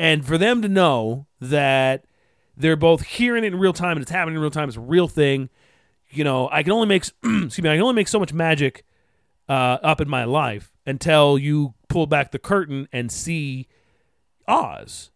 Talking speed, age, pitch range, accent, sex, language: 205 wpm, 30-49, 125-170 Hz, American, male, English